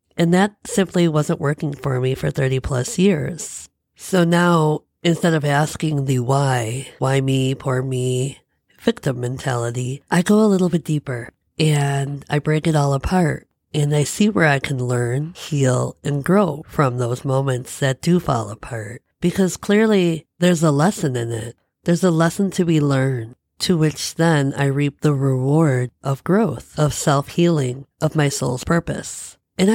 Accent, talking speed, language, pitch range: American, 165 wpm, English, 135-170 Hz